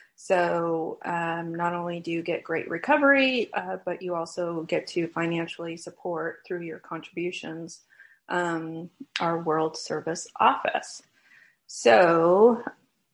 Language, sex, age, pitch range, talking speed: English, female, 30-49, 175-195 Hz, 125 wpm